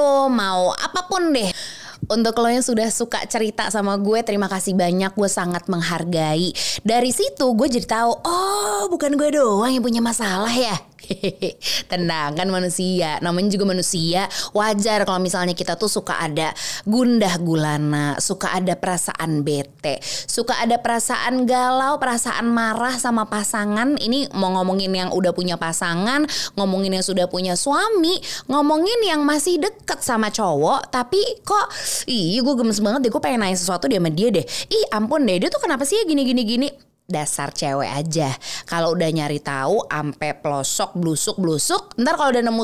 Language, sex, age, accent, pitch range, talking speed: Indonesian, female, 20-39, native, 175-255 Hz, 160 wpm